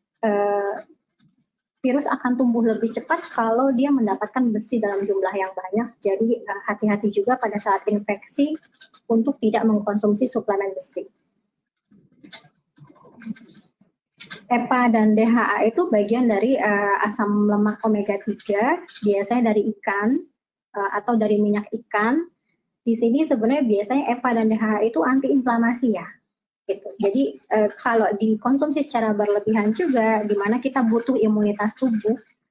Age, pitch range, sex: 20-39, 205-245 Hz, male